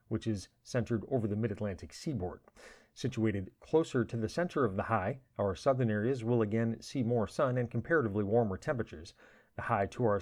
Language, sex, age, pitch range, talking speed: English, male, 40-59, 105-125 Hz, 180 wpm